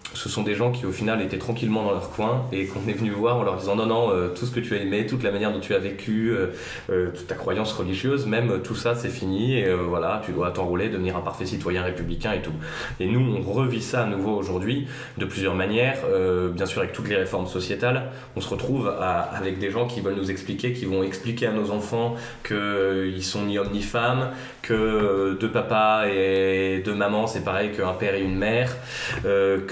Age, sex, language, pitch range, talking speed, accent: 20-39, male, French, 95-115 Hz, 240 wpm, French